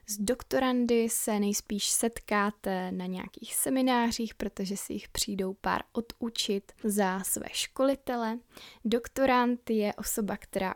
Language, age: Czech, 20-39